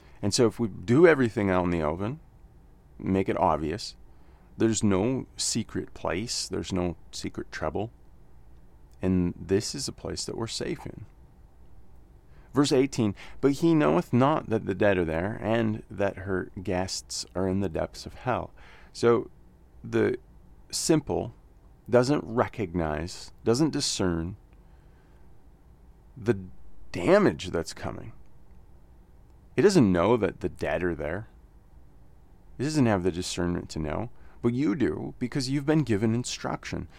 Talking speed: 140 wpm